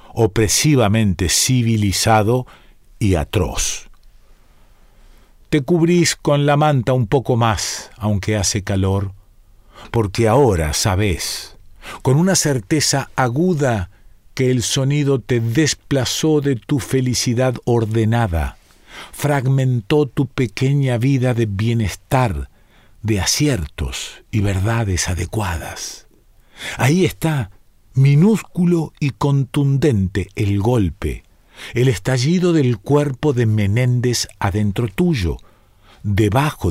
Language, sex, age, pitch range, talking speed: Spanish, male, 50-69, 100-140 Hz, 95 wpm